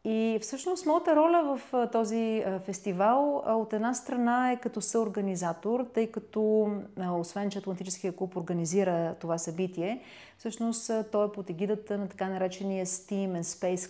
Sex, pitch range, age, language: female, 170-210 Hz, 30-49, Bulgarian